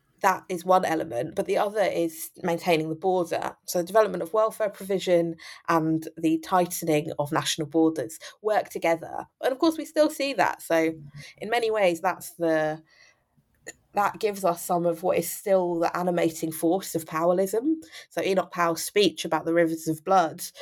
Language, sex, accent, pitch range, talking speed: English, female, British, 165-205 Hz, 175 wpm